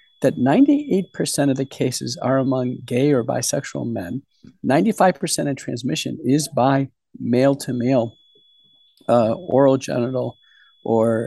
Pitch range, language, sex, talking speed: 125-175 Hz, English, male, 110 wpm